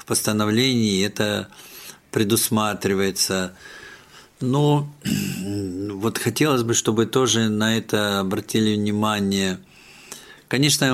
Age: 50-69